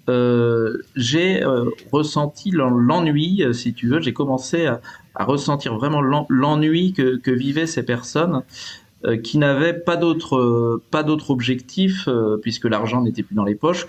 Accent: French